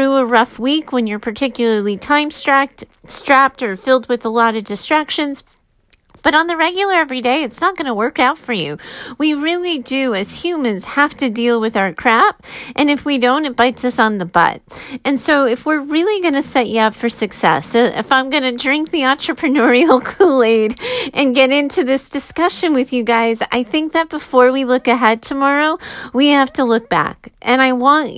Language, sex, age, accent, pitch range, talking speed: English, female, 30-49, American, 230-290 Hz, 200 wpm